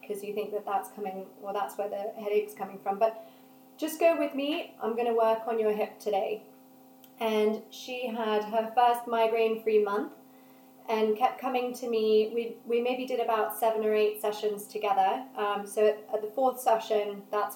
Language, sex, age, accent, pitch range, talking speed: English, female, 30-49, British, 210-240 Hz, 190 wpm